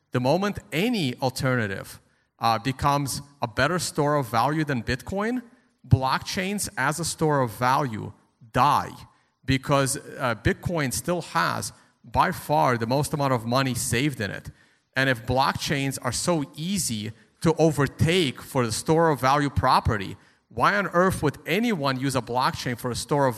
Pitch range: 125-165 Hz